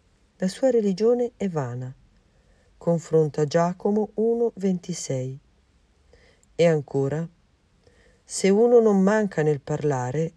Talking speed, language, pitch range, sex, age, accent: 95 wpm, Italian, 145-210 Hz, female, 50-69, native